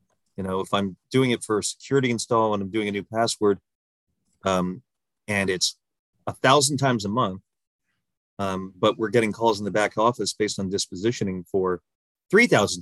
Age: 30-49